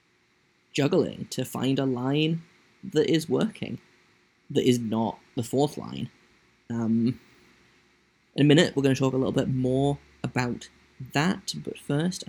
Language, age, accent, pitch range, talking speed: English, 20-39, British, 125-145 Hz, 145 wpm